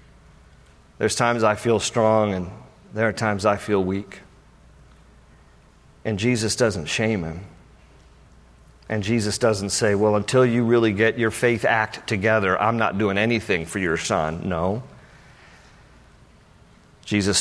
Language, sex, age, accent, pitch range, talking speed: English, male, 50-69, American, 90-110 Hz, 135 wpm